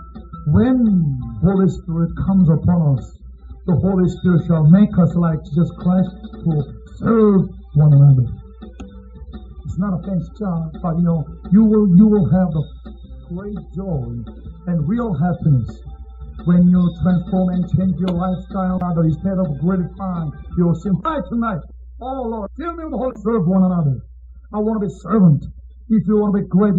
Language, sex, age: Korean, male, 50-69